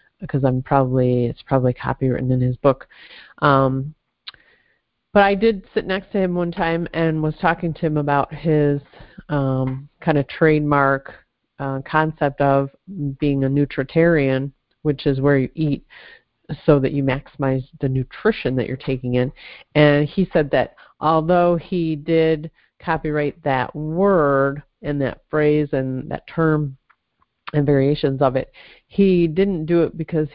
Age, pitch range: 40-59, 135-170 Hz